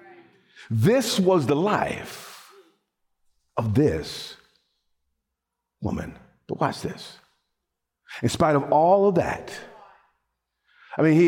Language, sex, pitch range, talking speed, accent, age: English, male, 155-215 Hz, 100 wpm, American, 50-69